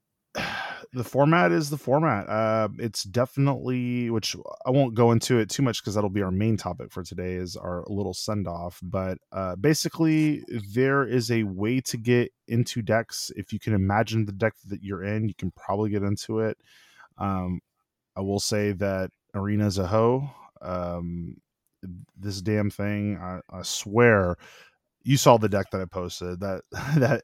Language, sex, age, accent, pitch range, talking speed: English, male, 20-39, American, 95-120 Hz, 175 wpm